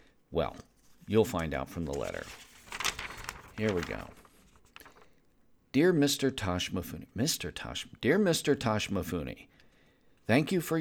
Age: 50-69